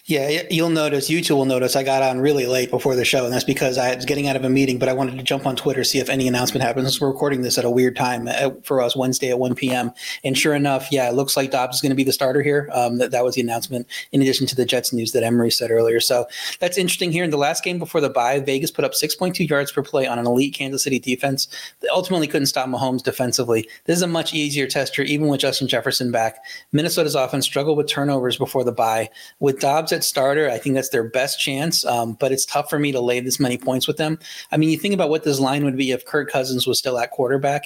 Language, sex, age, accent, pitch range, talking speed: English, male, 30-49, American, 125-145 Hz, 270 wpm